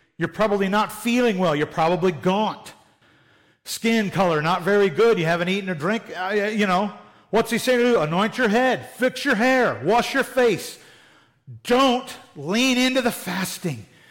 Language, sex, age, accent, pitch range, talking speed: English, male, 50-69, American, 165-235 Hz, 175 wpm